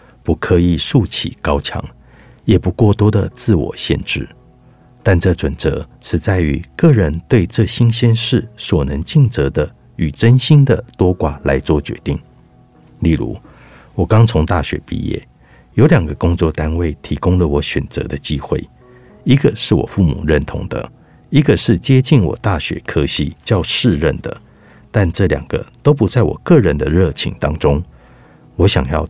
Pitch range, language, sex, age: 80-120 Hz, Chinese, male, 50-69